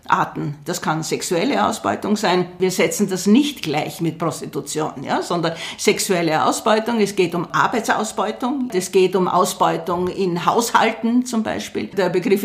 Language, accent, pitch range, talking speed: German, Austrian, 180-220 Hz, 150 wpm